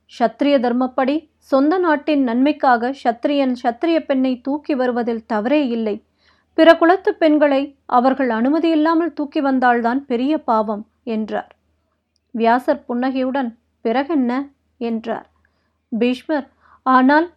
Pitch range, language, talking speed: 245-300 Hz, Tamil, 90 wpm